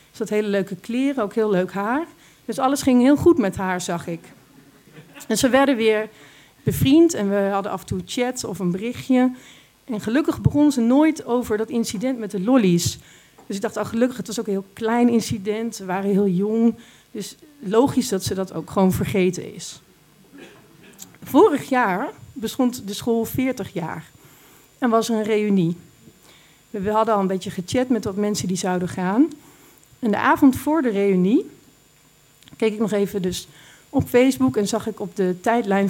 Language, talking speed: Dutch, 185 wpm